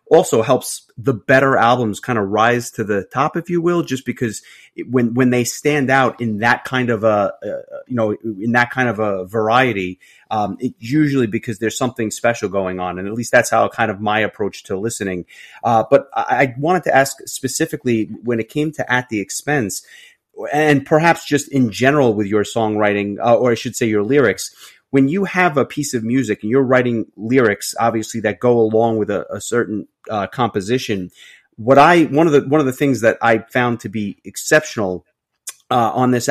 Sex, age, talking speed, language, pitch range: male, 30-49, 205 wpm, English, 110-140 Hz